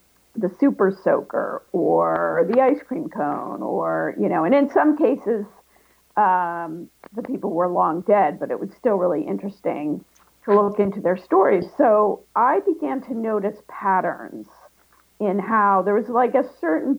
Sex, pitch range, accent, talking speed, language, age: female, 190-255 Hz, American, 160 wpm, English, 50-69